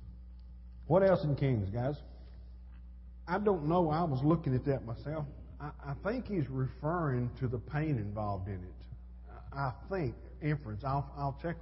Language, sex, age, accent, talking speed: English, male, 50-69, American, 160 wpm